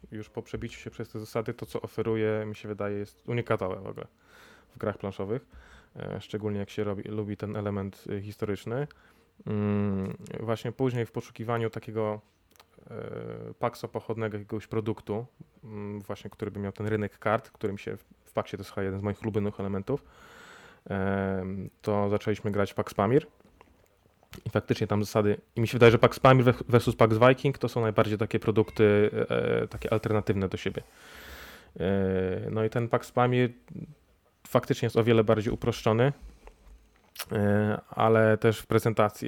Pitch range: 100-115 Hz